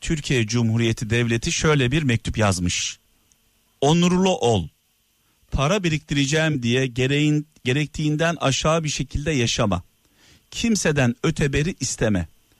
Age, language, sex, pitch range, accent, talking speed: 50-69, Turkish, male, 115-175 Hz, native, 100 wpm